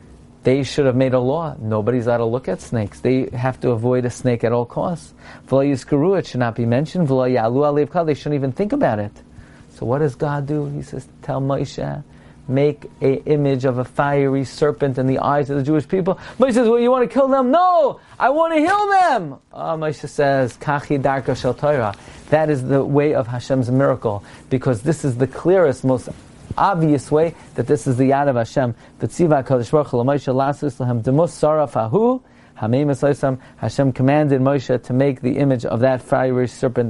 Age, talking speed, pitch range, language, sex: 40-59, 180 wpm, 125-150 Hz, English, male